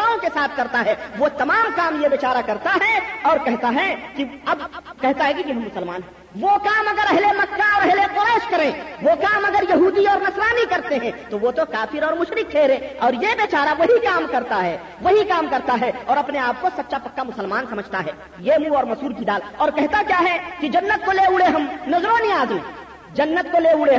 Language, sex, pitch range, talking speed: Urdu, female, 285-395 Hz, 220 wpm